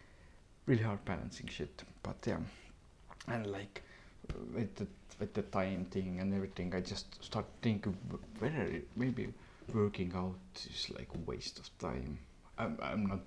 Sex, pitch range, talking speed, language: male, 90-100 Hz, 165 wpm, English